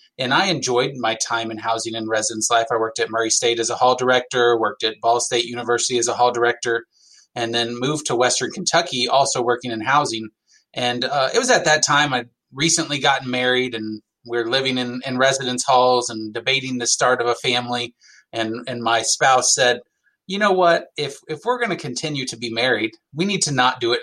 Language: English